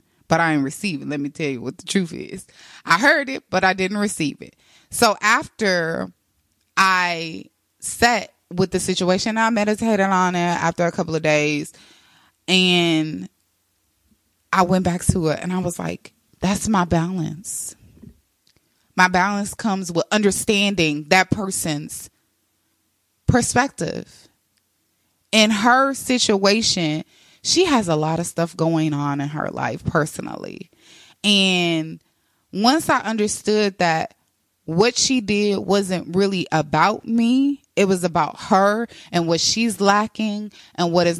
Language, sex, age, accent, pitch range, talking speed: English, female, 20-39, American, 160-205 Hz, 140 wpm